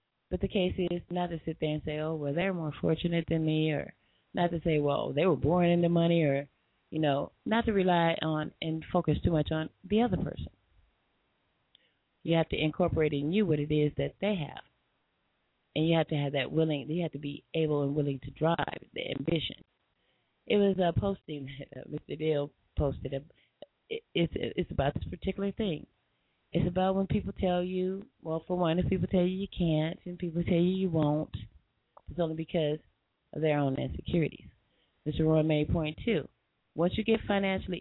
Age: 30-49